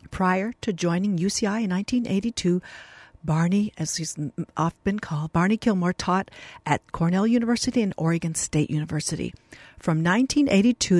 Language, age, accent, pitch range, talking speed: English, 60-79, American, 160-205 Hz, 125 wpm